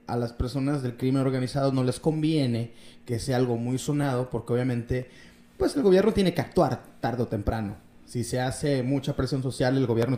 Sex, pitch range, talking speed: male, 115-145 Hz, 195 wpm